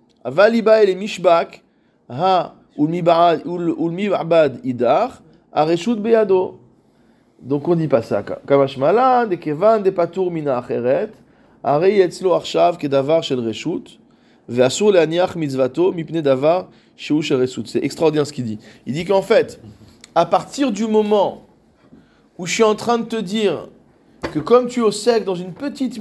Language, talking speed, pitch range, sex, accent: French, 80 wpm, 150-220 Hz, male, French